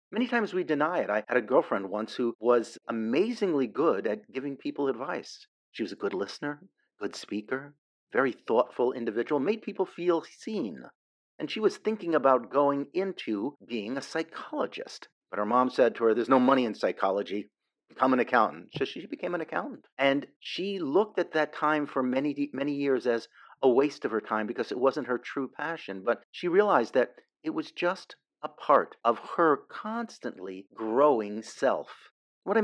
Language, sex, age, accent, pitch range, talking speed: English, male, 40-59, American, 115-175 Hz, 180 wpm